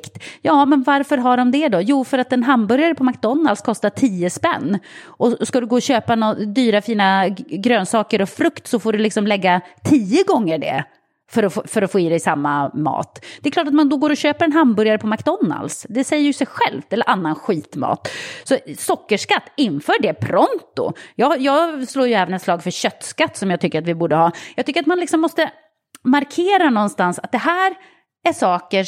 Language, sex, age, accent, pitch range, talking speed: English, female, 30-49, Swedish, 195-290 Hz, 210 wpm